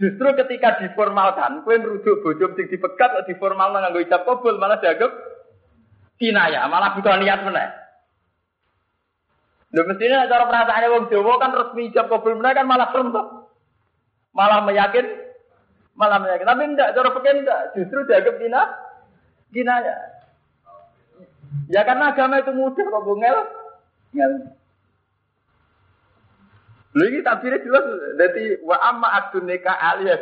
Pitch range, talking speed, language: 185-260 Hz, 125 wpm, Malay